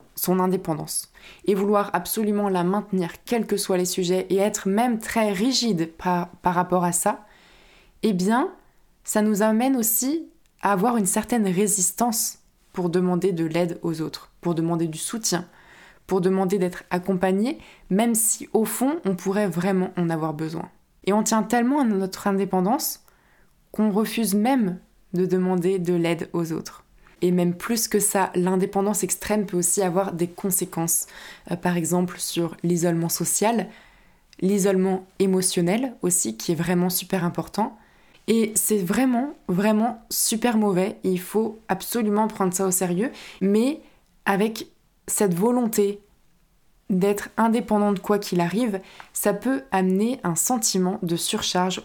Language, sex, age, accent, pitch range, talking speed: French, female, 20-39, French, 180-215 Hz, 150 wpm